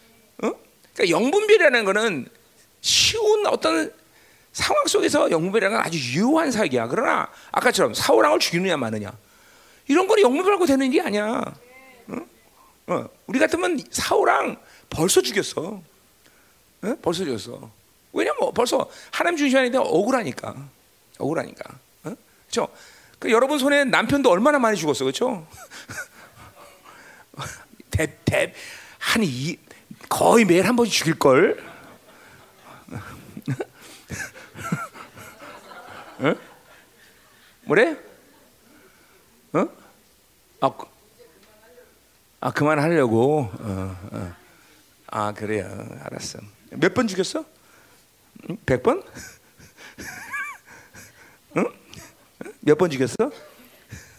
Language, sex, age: Korean, male, 40-59